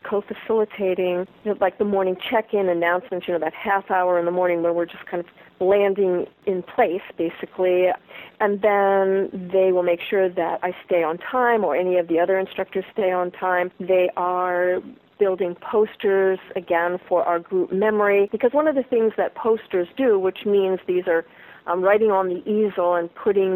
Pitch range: 180-215 Hz